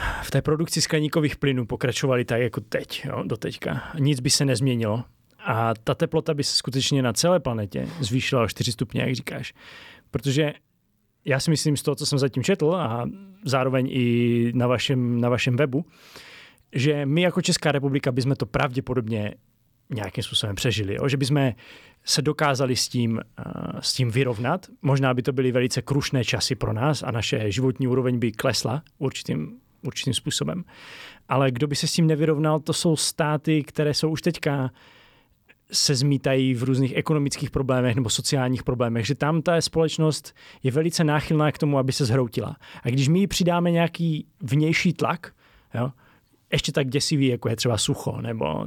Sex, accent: male, native